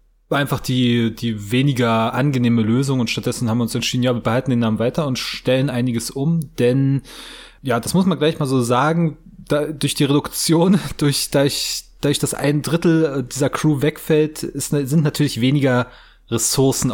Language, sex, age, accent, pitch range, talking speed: German, male, 20-39, German, 110-140 Hz, 180 wpm